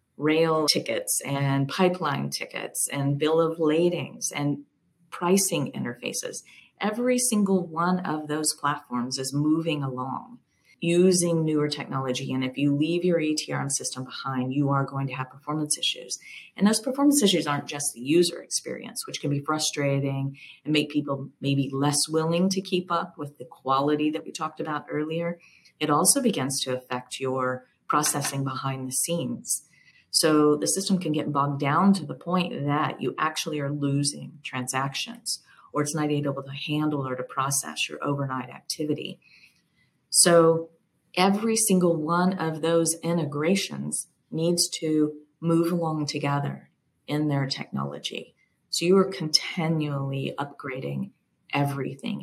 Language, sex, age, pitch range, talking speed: English, female, 40-59, 140-170 Hz, 145 wpm